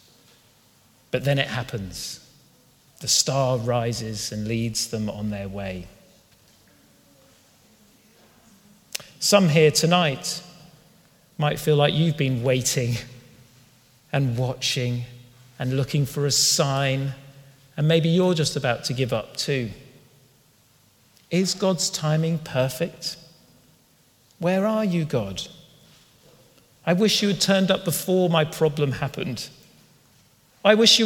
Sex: male